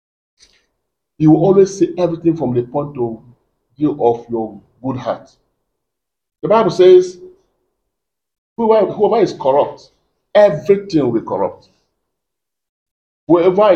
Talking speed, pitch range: 115 wpm, 135-205 Hz